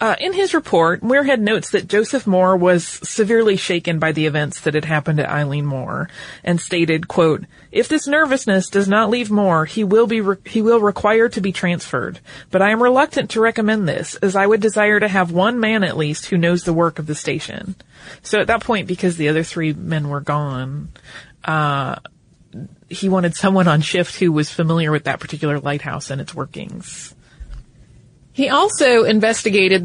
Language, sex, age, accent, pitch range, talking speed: English, female, 30-49, American, 175-230 Hz, 190 wpm